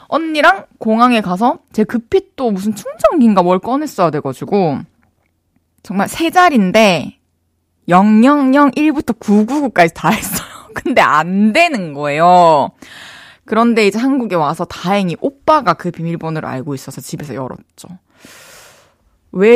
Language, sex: Korean, female